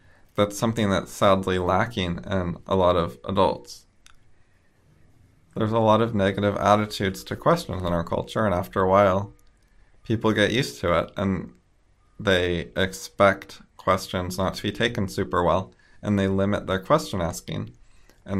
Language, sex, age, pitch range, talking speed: English, male, 20-39, 90-105 Hz, 155 wpm